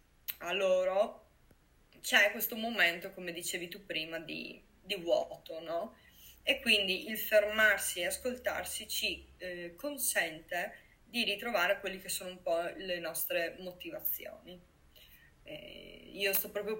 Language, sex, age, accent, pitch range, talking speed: Italian, female, 20-39, native, 165-200 Hz, 130 wpm